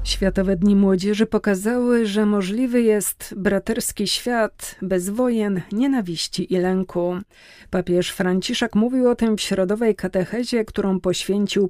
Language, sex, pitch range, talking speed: Polish, female, 180-220 Hz, 125 wpm